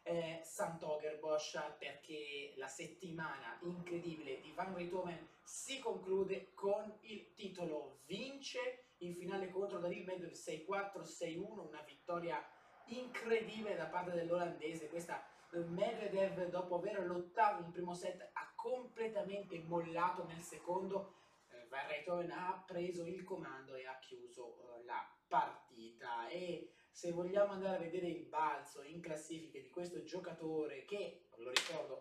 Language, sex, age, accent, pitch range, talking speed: Italian, male, 30-49, native, 165-195 Hz, 135 wpm